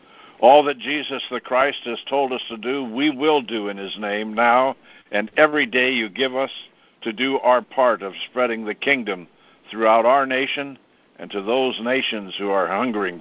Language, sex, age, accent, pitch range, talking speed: English, male, 60-79, American, 110-135 Hz, 185 wpm